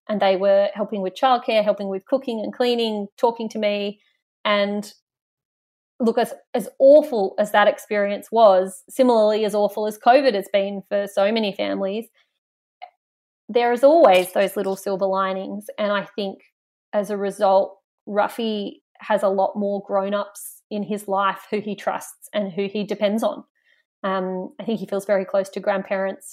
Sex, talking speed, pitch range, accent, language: female, 165 wpm, 200-240 Hz, Australian, English